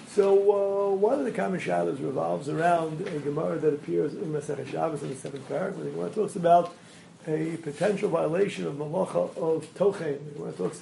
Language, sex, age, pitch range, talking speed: English, male, 40-59, 155-200 Hz, 195 wpm